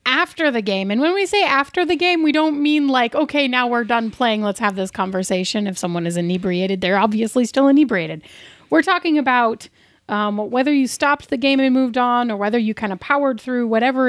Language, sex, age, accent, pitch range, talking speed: English, female, 30-49, American, 195-260 Hz, 215 wpm